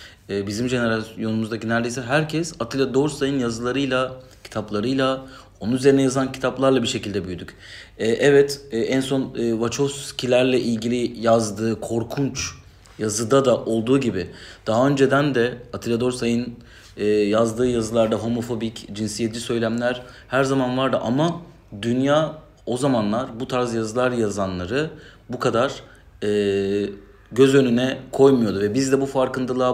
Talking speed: 115 wpm